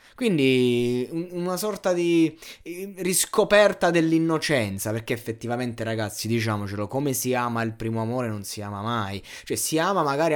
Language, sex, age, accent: Italian, male, 20-39, native